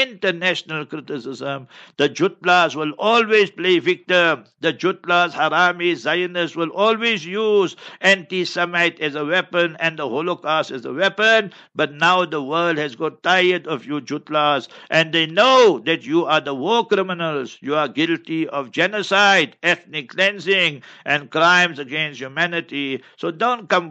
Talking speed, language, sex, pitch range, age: 150 wpm, English, male, 155-185 Hz, 60-79